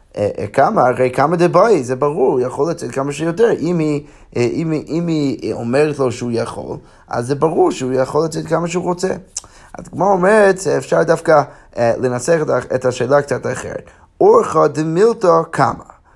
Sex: male